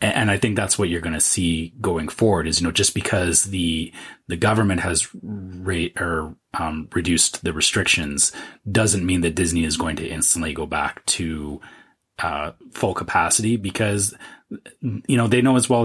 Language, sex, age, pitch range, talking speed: English, male, 30-49, 85-105 Hz, 180 wpm